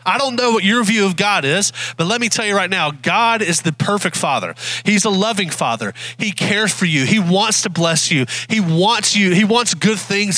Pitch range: 170-225 Hz